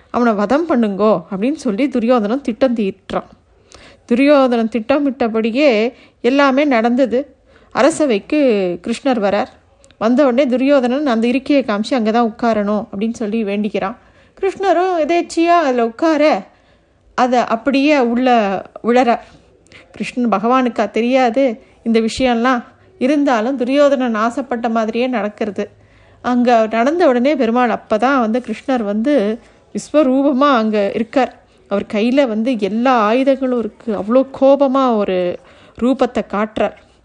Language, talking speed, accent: Tamil, 110 wpm, native